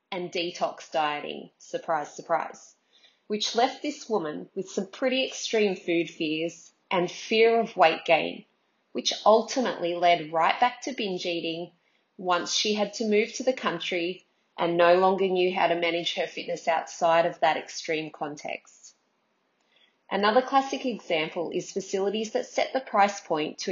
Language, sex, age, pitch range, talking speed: English, female, 30-49, 175-225 Hz, 155 wpm